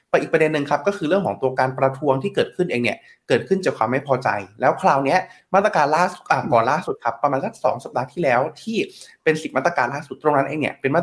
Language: Thai